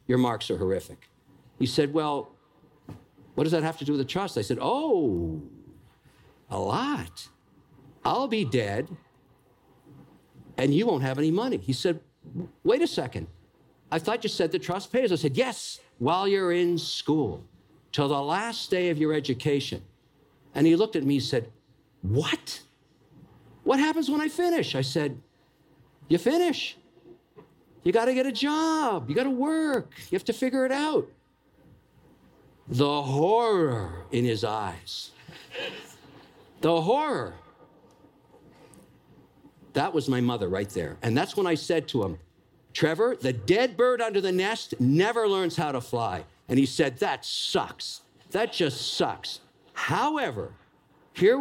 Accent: American